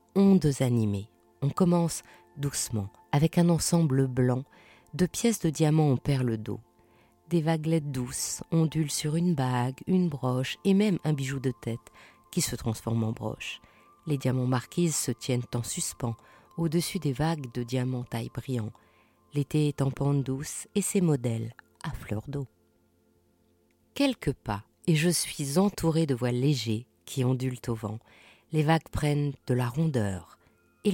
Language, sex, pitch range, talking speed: French, female, 120-170 Hz, 155 wpm